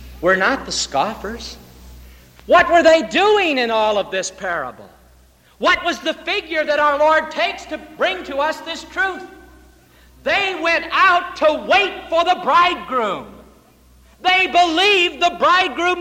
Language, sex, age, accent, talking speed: English, male, 60-79, American, 145 wpm